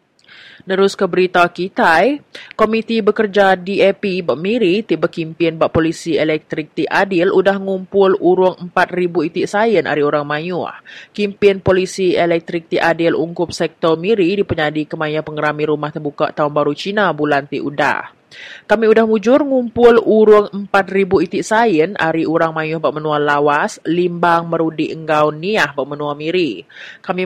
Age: 30-49